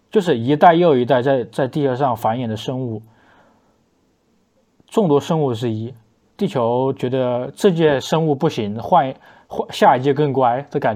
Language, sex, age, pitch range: Chinese, male, 20-39, 120-170 Hz